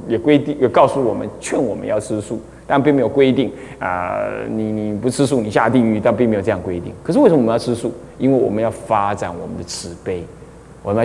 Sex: male